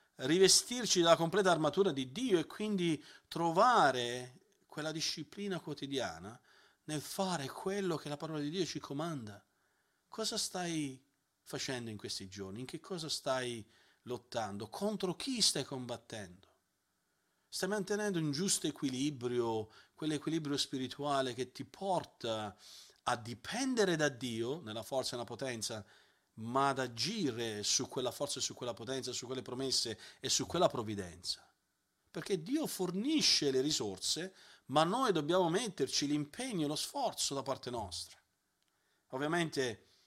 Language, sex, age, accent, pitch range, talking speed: Italian, male, 40-59, native, 120-175 Hz, 135 wpm